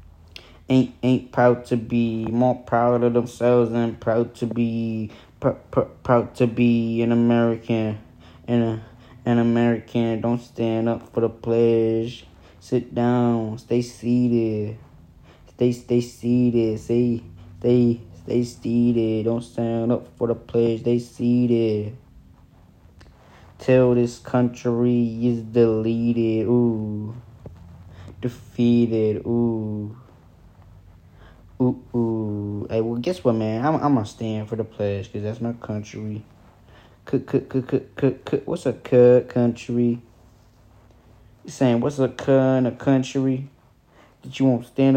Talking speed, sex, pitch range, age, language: 115 wpm, male, 110-120 Hz, 10-29, English